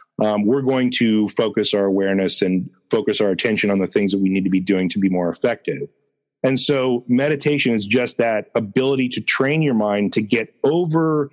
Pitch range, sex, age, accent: 100-130 Hz, male, 30-49, American